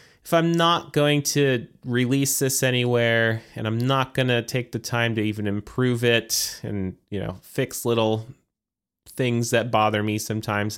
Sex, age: male, 30-49